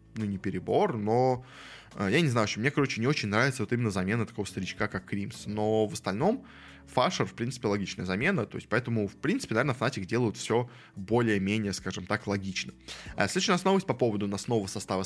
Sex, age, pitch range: male, 20-39, 105-130 Hz